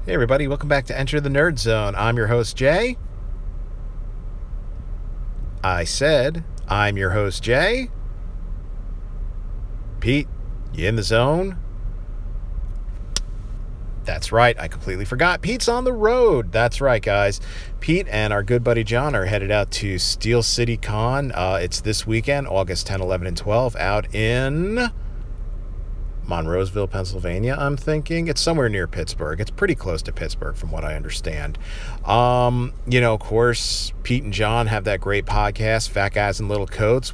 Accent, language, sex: American, English, male